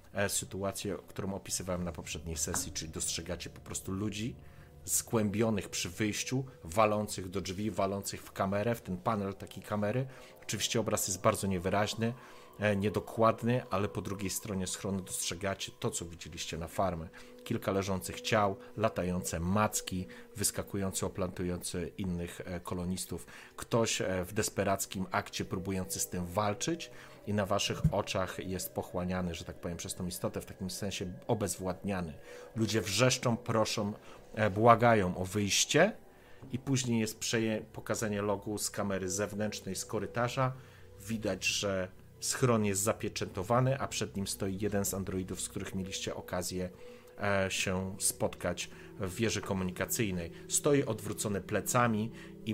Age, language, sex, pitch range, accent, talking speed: 30-49, Polish, male, 95-110 Hz, native, 130 wpm